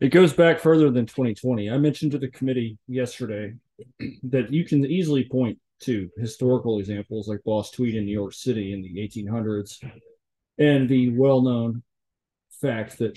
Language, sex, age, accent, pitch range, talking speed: English, male, 40-59, American, 105-125 Hz, 160 wpm